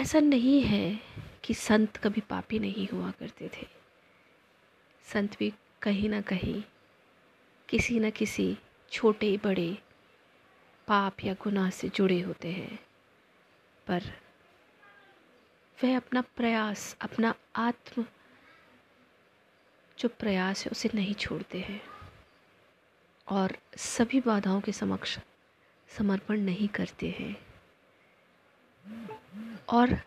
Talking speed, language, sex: 100 wpm, Hindi, female